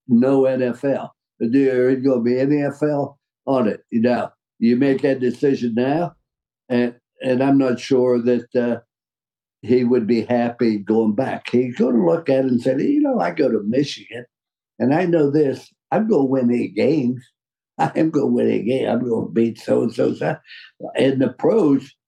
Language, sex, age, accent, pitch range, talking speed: English, male, 60-79, American, 125-155 Hz, 190 wpm